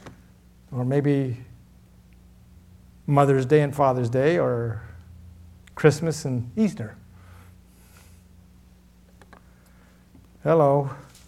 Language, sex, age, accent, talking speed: English, male, 60-79, American, 65 wpm